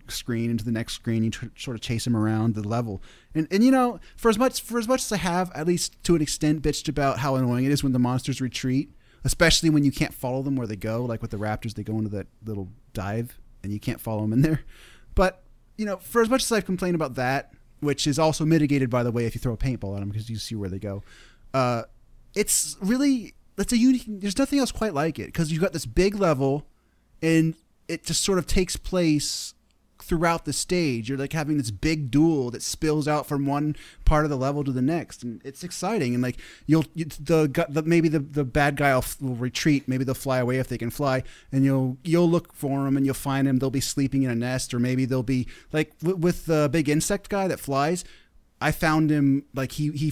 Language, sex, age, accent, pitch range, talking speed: English, male, 30-49, American, 125-160 Hz, 240 wpm